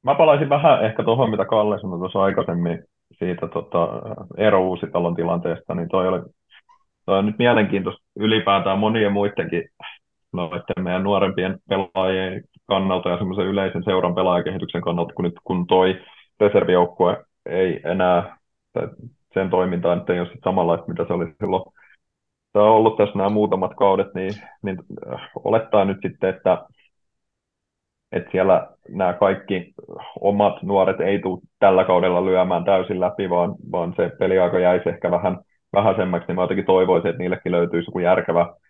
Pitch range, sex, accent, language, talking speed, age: 90-100 Hz, male, native, Finnish, 145 wpm, 30-49